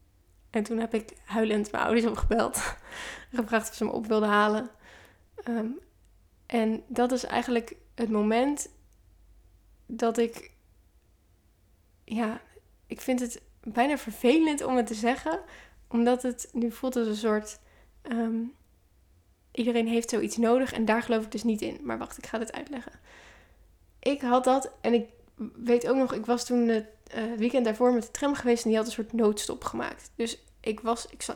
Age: 10-29